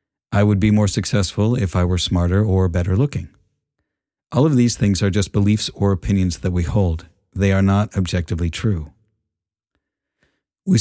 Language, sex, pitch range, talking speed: English, male, 95-110 Hz, 165 wpm